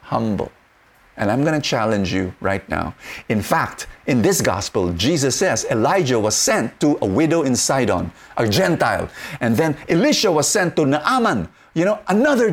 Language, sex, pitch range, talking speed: English, male, 100-150 Hz, 170 wpm